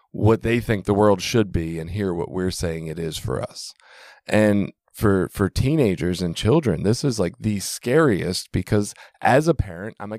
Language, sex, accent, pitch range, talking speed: English, male, American, 100-125 Hz, 195 wpm